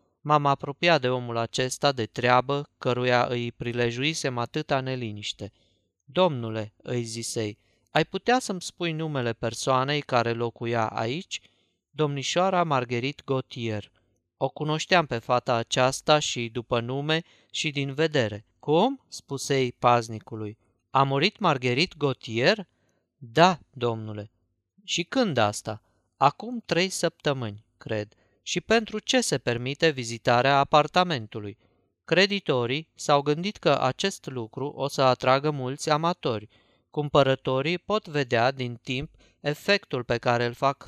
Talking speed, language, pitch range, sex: 120 wpm, Romanian, 115-155 Hz, male